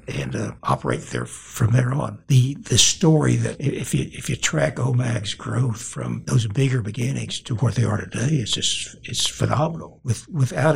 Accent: American